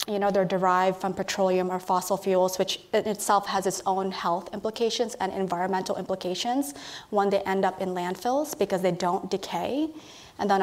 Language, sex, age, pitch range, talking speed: English, female, 20-39, 190-230 Hz, 180 wpm